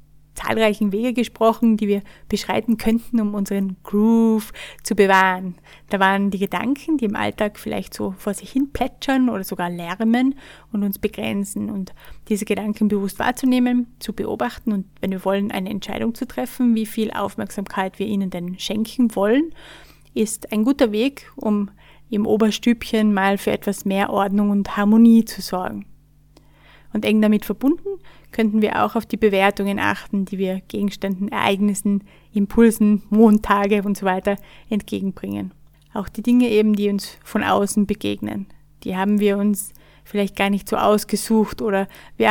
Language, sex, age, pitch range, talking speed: German, female, 30-49, 195-220 Hz, 155 wpm